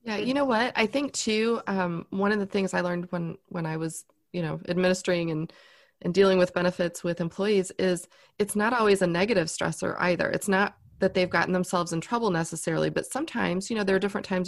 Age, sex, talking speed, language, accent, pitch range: 30-49, female, 220 wpm, English, American, 170-195 Hz